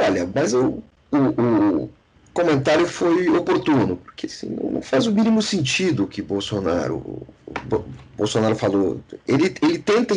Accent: Brazilian